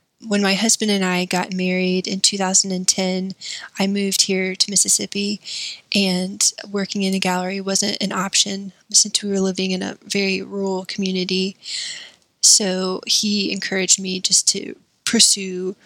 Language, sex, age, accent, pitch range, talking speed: English, female, 20-39, American, 185-205 Hz, 145 wpm